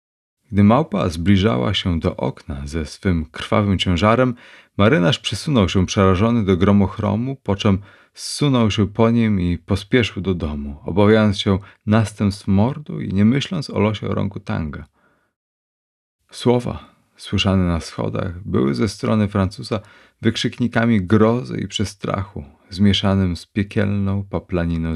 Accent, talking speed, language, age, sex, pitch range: native, 130 wpm, Polish, 30-49, male, 90-115 Hz